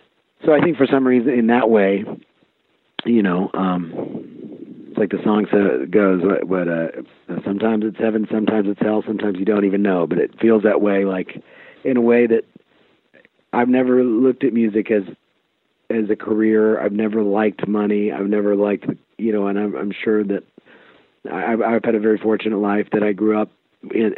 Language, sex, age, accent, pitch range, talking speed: English, male, 40-59, American, 100-110 Hz, 195 wpm